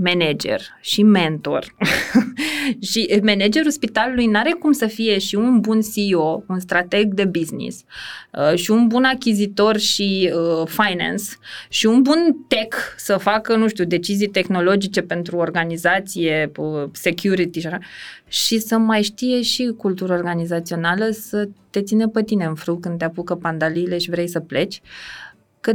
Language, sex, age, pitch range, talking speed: Romanian, female, 20-39, 180-225 Hz, 145 wpm